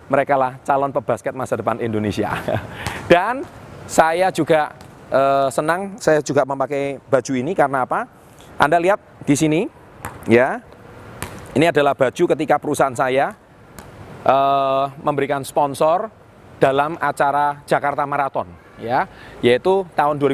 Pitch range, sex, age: 120-150 Hz, male, 30-49